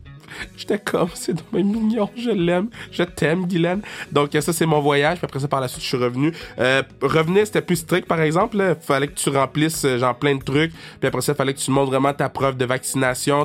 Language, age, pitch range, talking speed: French, 20-39, 120-155 Hz, 235 wpm